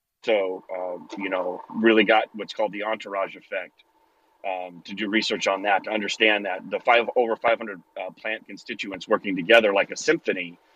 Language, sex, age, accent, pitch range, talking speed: English, male, 30-49, American, 100-135 Hz, 180 wpm